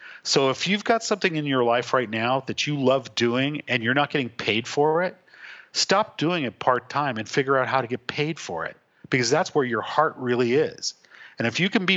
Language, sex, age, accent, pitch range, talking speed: English, male, 50-69, American, 125-185 Hz, 230 wpm